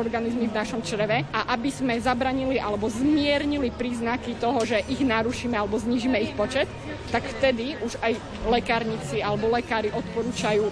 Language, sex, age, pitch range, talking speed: Slovak, female, 20-39, 220-255 Hz, 150 wpm